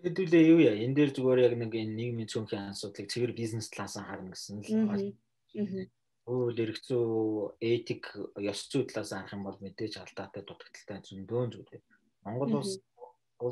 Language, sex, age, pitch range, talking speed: Russian, male, 30-49, 105-125 Hz, 125 wpm